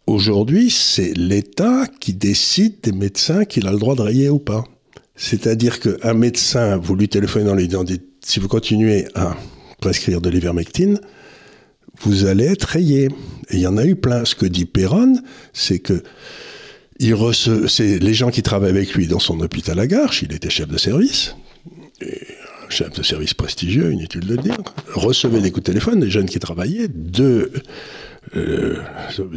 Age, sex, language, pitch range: 60-79, male, French, 95-145 Hz